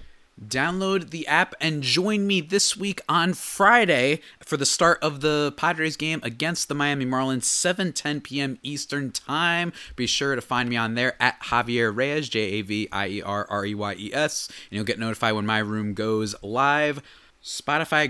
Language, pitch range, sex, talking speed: English, 115-155 Hz, male, 155 wpm